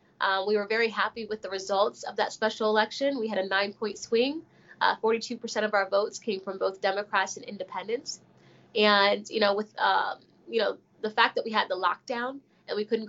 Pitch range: 200-230 Hz